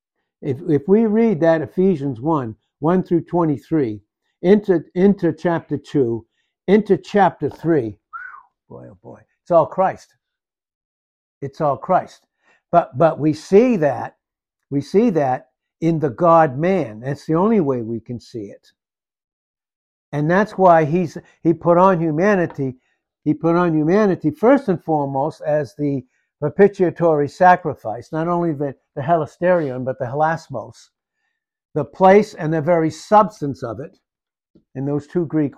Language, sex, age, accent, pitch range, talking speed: English, male, 60-79, American, 140-180 Hz, 145 wpm